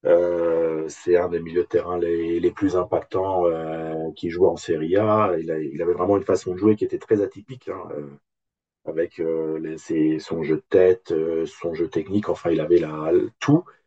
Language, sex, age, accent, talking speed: French, male, 40-59, French, 190 wpm